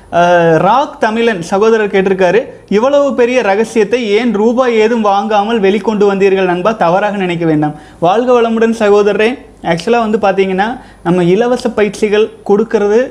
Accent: native